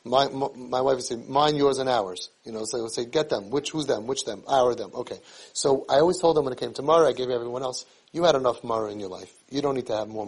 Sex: male